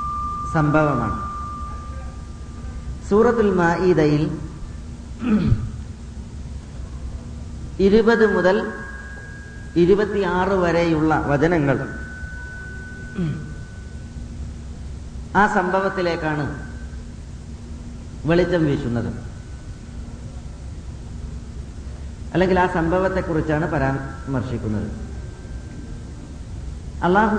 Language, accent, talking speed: Malayalam, native, 35 wpm